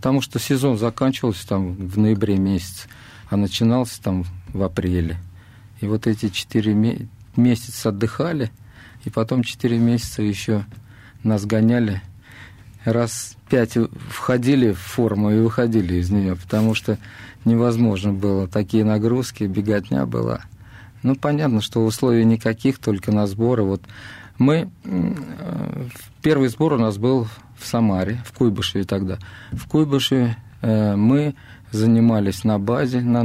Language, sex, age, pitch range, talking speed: Russian, male, 40-59, 105-120 Hz, 125 wpm